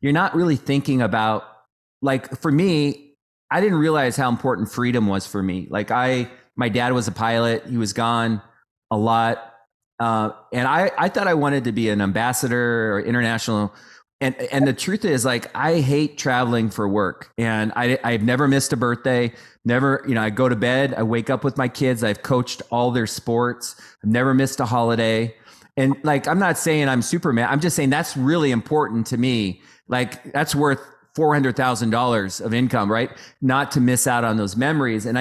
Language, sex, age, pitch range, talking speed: English, male, 30-49, 115-145 Hz, 195 wpm